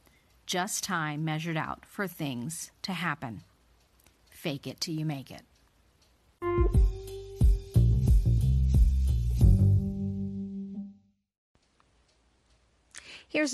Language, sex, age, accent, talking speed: English, female, 40-59, American, 65 wpm